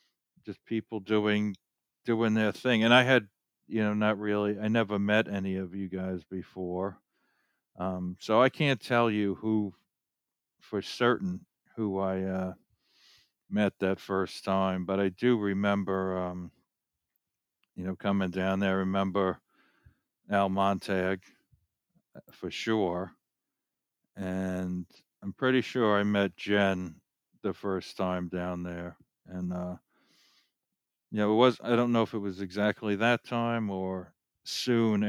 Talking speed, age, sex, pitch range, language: 140 wpm, 60-79, male, 95-105 Hz, English